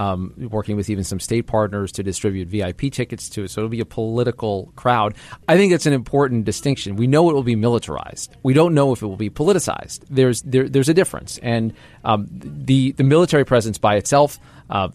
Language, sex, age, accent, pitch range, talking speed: English, male, 40-59, American, 105-135 Hz, 220 wpm